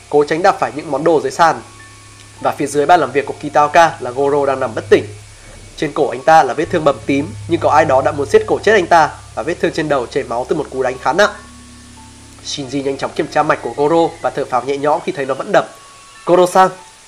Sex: male